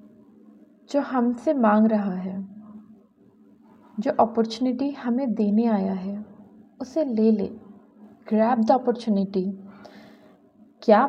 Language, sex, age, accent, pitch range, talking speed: Hindi, female, 30-49, native, 210-255 Hz, 95 wpm